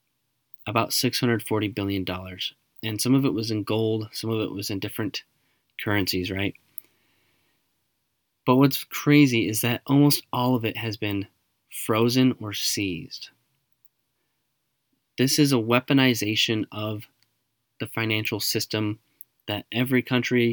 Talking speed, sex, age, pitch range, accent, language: 125 wpm, male, 20-39, 105-125 Hz, American, English